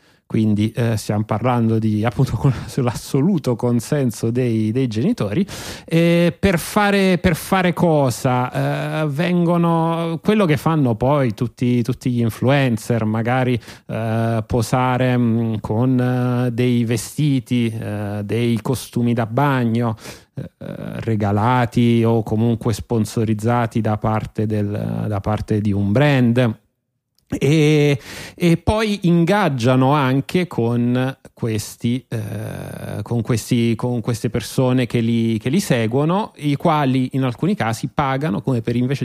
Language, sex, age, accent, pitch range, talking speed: Italian, male, 30-49, native, 115-140 Hz, 125 wpm